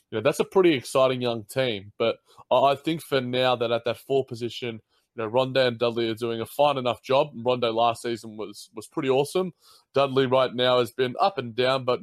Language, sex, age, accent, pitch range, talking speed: English, male, 20-39, Australian, 115-135 Hz, 225 wpm